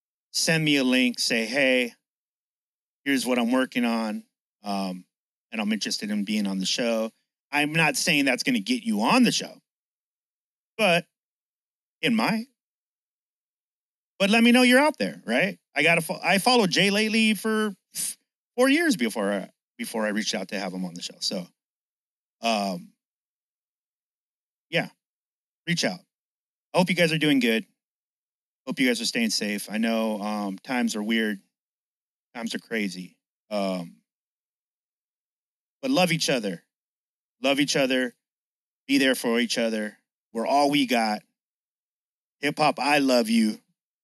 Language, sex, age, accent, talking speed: English, male, 30-49, American, 155 wpm